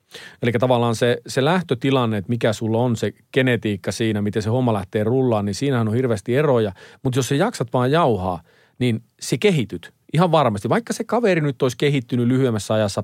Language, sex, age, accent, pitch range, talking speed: Finnish, male, 40-59, native, 110-150 Hz, 190 wpm